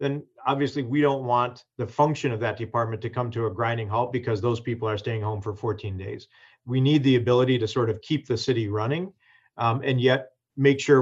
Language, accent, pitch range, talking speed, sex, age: English, American, 115-140 Hz, 225 wpm, male, 40-59